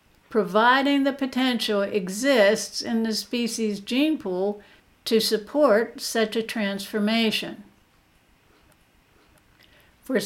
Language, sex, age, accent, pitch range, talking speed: English, female, 60-79, American, 205-250 Hz, 90 wpm